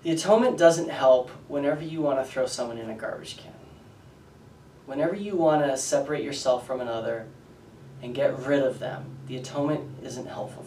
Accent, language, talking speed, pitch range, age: American, English, 175 wpm, 120-140 Hz, 30-49